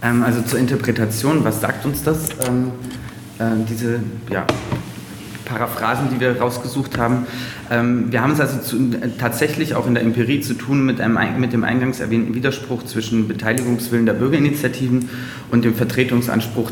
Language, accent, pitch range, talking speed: German, German, 110-125 Hz, 135 wpm